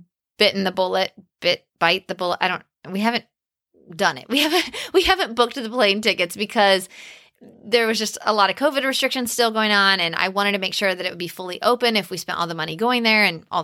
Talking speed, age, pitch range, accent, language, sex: 245 wpm, 30-49, 180-230 Hz, American, English, female